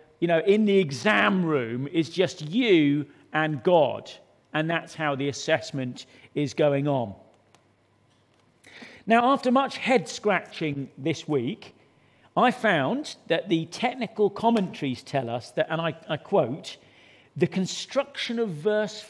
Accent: British